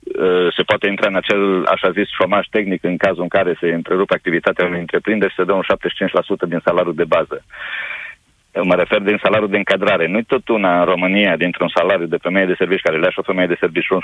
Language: Romanian